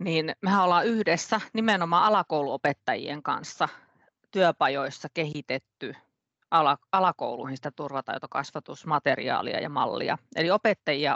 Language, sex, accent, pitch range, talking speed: Finnish, female, native, 145-190 Hz, 85 wpm